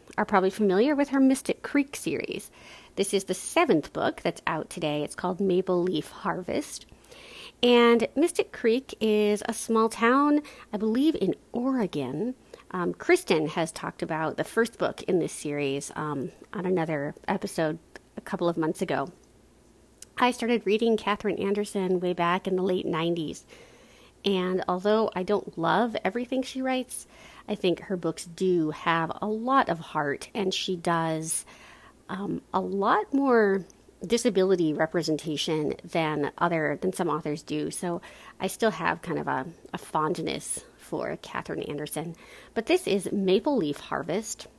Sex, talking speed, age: female, 155 wpm, 30-49